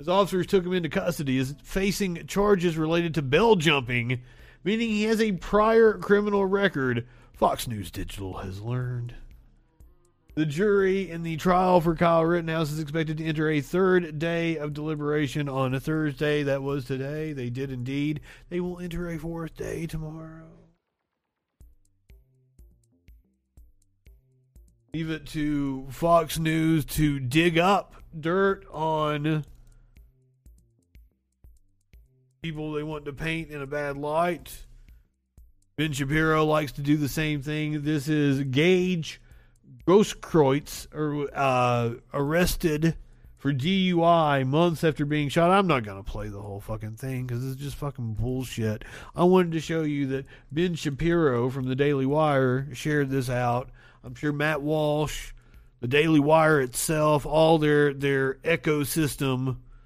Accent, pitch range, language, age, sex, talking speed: American, 125-165 Hz, English, 40-59, male, 135 wpm